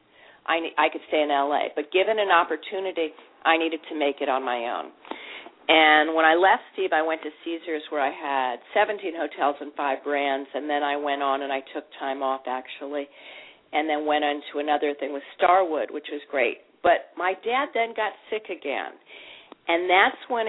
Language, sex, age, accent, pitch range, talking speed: English, female, 40-59, American, 150-180 Hz, 195 wpm